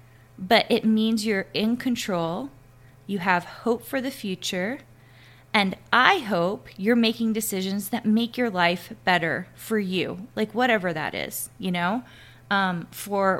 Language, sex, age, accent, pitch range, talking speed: English, female, 20-39, American, 180-220 Hz, 150 wpm